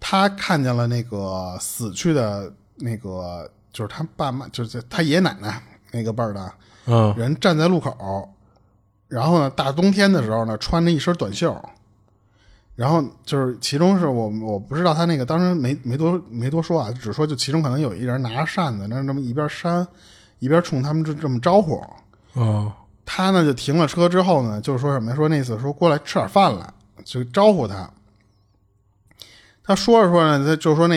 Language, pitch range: Chinese, 110-165 Hz